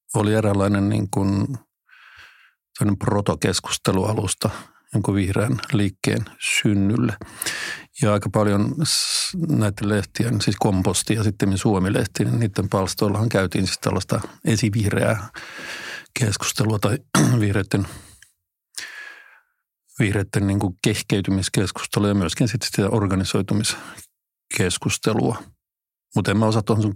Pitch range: 100-115 Hz